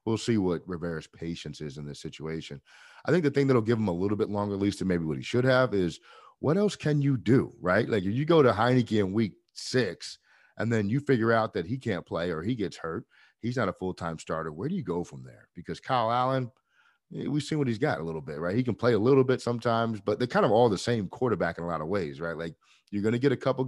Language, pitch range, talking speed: English, 85-120 Hz, 275 wpm